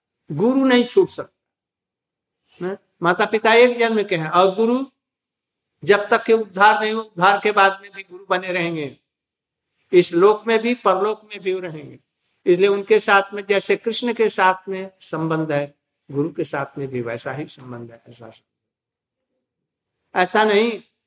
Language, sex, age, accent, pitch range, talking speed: Hindi, male, 60-79, native, 150-215 Hz, 160 wpm